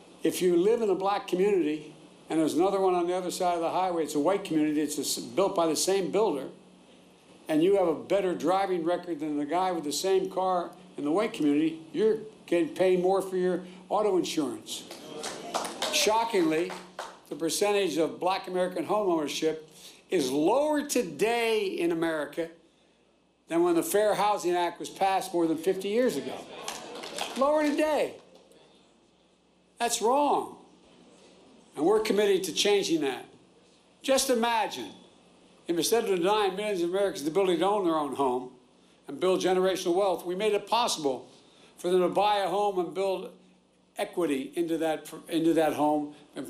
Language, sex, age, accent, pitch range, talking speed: English, male, 60-79, American, 165-215 Hz, 165 wpm